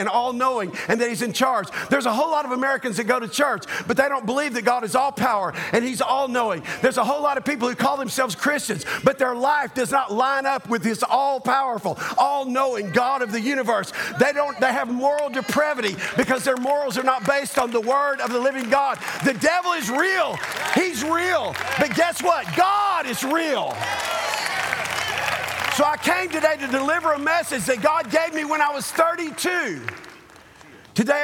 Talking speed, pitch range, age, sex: 195 wpm, 205-280 Hz, 50-69, male